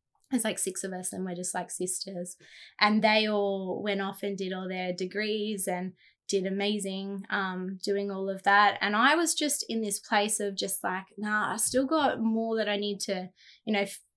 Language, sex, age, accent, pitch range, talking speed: English, female, 20-39, Australian, 190-220 Hz, 210 wpm